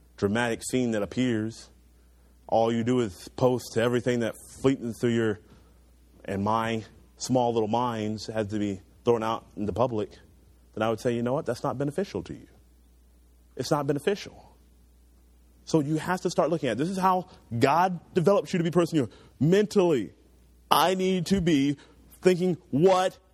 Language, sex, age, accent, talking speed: English, male, 30-49, American, 170 wpm